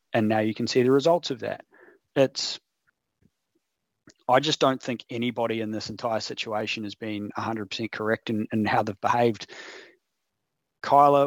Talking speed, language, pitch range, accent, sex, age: 160 wpm, English, 115-140 Hz, Australian, male, 30-49